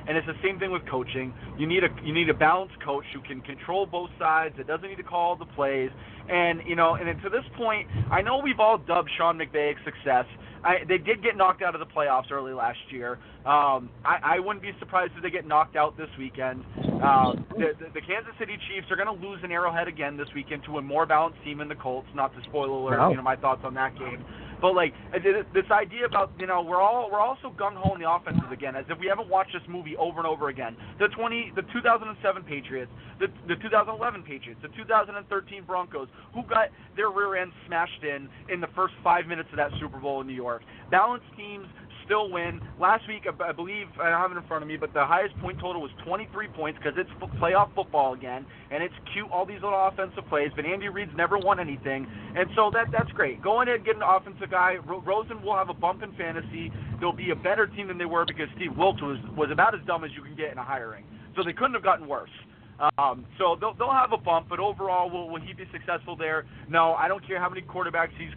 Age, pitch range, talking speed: 30-49, 140-195 Hz, 240 wpm